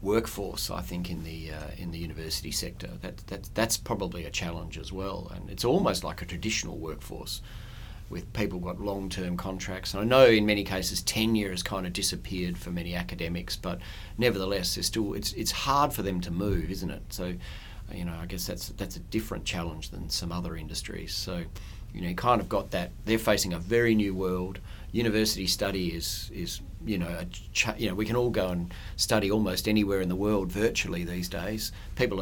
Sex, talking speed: male, 205 wpm